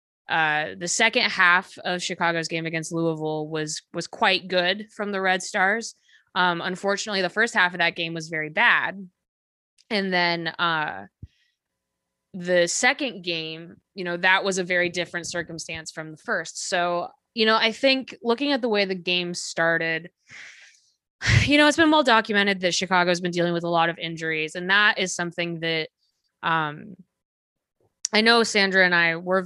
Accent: American